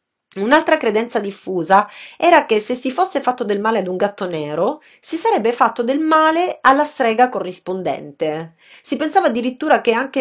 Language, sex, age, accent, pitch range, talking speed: English, female, 30-49, Italian, 185-270 Hz, 165 wpm